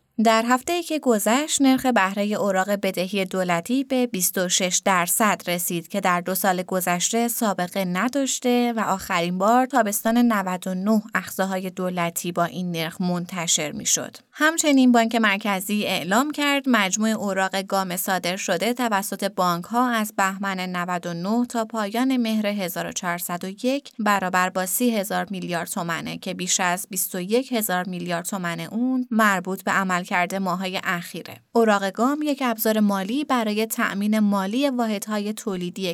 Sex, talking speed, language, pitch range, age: female, 140 wpm, Persian, 180-230 Hz, 20-39